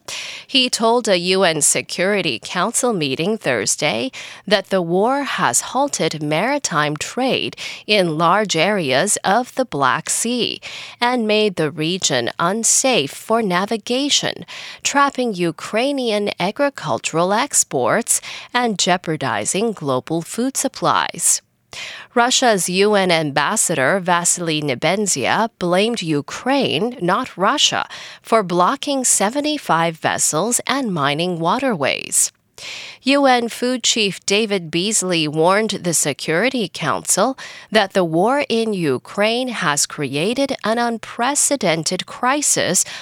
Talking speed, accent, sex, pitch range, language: 100 wpm, American, female, 170-245 Hz, English